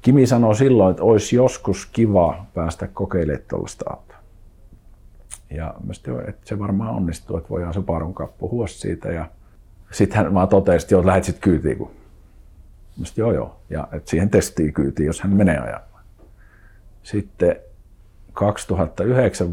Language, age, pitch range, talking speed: Finnish, 50-69, 80-100 Hz, 140 wpm